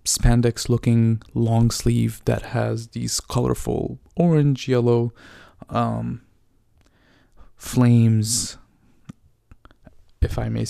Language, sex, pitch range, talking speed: English, male, 110-120 Hz, 85 wpm